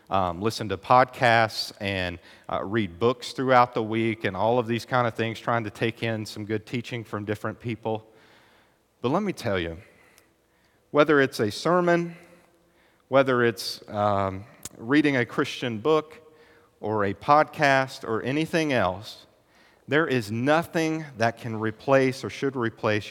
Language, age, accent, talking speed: English, 50-69, American, 155 wpm